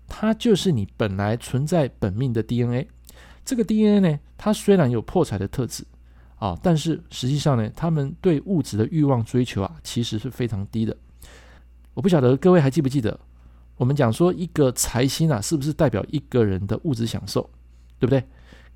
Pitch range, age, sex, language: 100-150 Hz, 50-69, male, Chinese